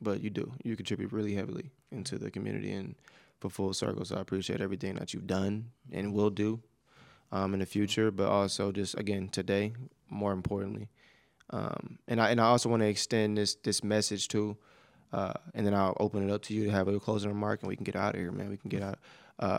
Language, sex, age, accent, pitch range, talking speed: English, male, 20-39, American, 100-115 Hz, 230 wpm